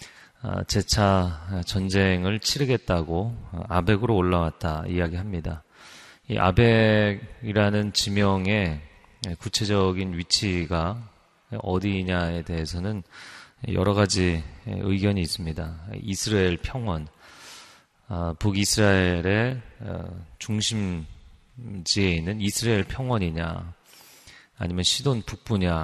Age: 30-49